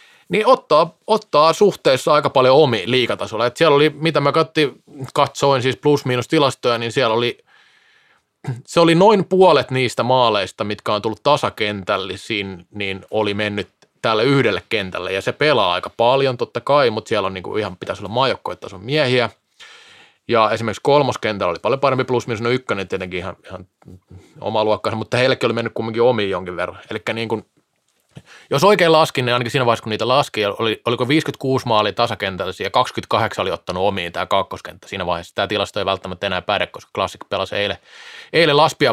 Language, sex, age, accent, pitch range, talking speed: Finnish, male, 20-39, native, 110-155 Hz, 165 wpm